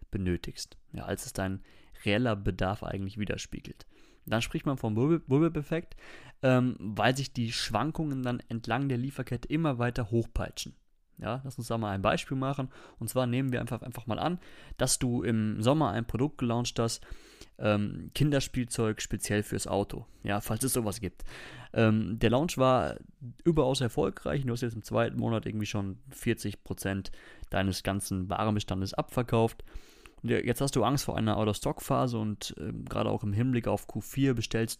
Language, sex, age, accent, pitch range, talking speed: German, male, 30-49, German, 105-130 Hz, 165 wpm